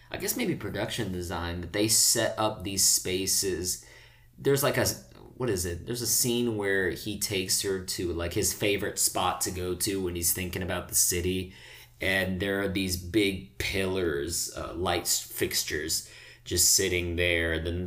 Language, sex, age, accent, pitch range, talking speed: English, male, 30-49, American, 90-120 Hz, 175 wpm